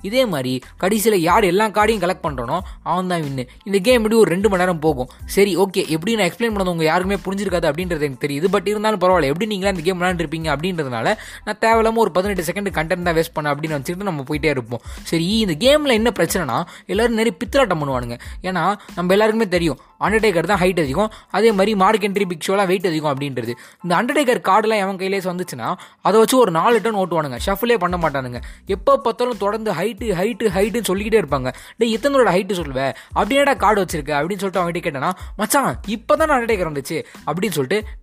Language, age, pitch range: Tamil, 20-39, 165-220 Hz